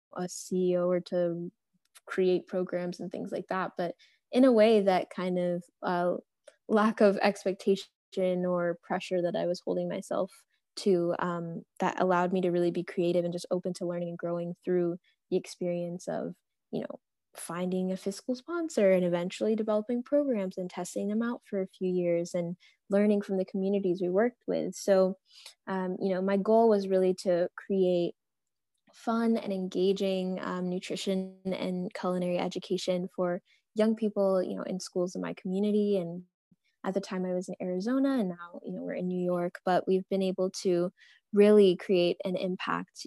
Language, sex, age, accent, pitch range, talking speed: English, female, 10-29, American, 180-195 Hz, 175 wpm